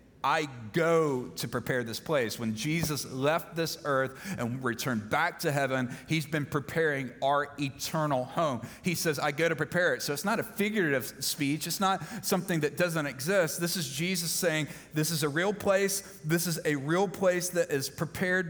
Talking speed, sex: 190 wpm, male